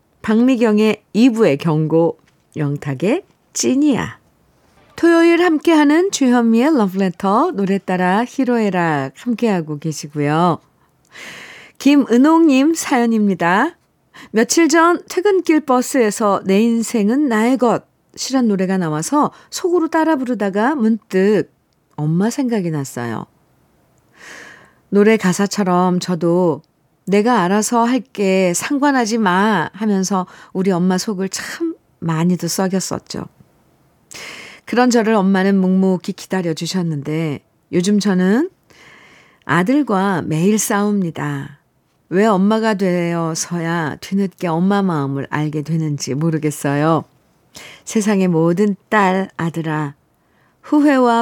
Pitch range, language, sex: 165-235 Hz, Korean, female